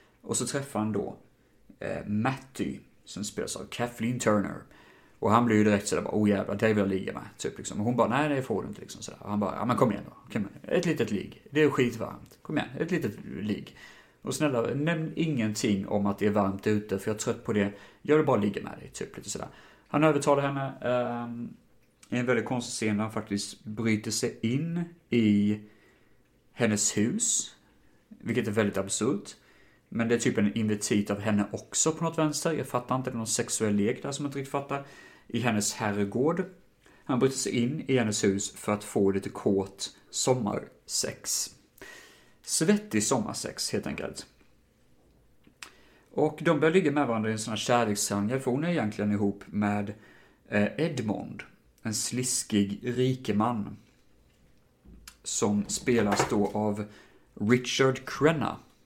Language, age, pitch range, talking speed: Swedish, 30-49, 105-135 Hz, 175 wpm